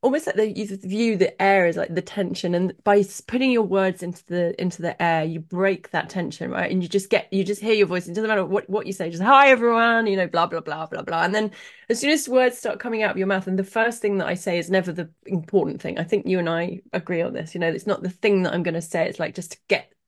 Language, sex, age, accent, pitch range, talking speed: English, female, 30-49, British, 170-210 Hz, 300 wpm